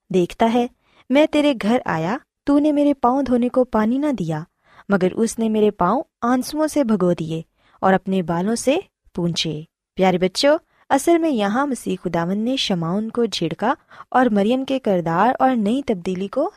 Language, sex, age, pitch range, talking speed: Urdu, female, 20-39, 185-260 Hz, 175 wpm